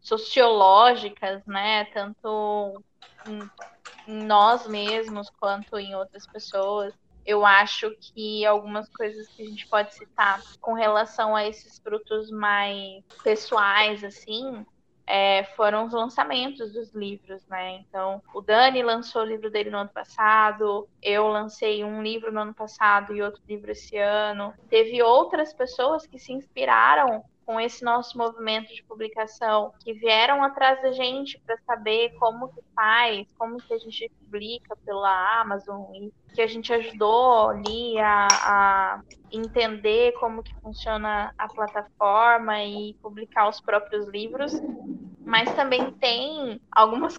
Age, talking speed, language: 10-29, 135 wpm, Portuguese